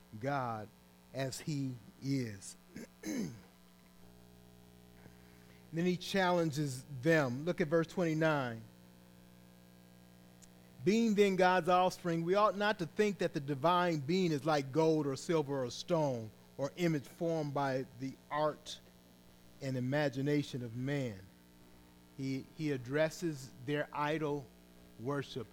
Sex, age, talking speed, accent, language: male, 40-59, 115 wpm, American, English